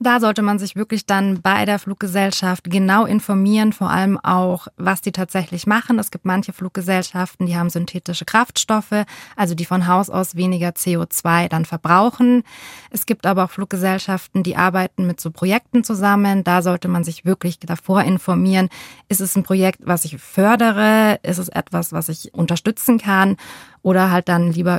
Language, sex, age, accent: German, female, 20-39, German